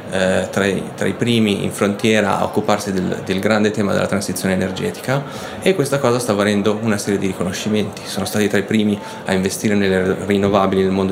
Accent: native